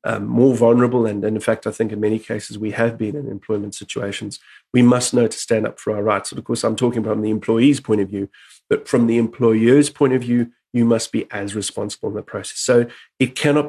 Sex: male